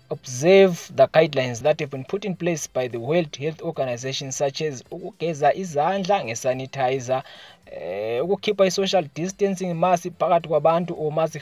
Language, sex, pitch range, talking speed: English, male, 130-175 Hz, 160 wpm